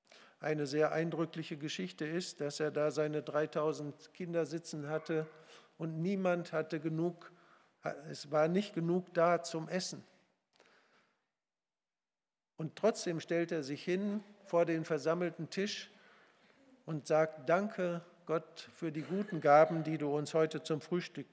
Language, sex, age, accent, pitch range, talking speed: German, male, 50-69, German, 155-180 Hz, 135 wpm